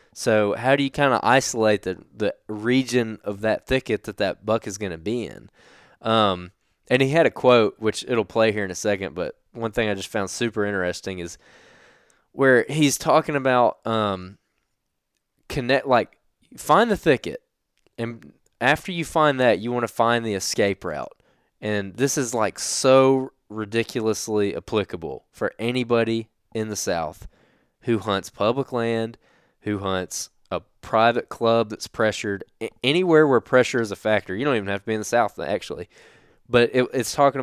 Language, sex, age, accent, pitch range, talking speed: English, male, 20-39, American, 100-120 Hz, 170 wpm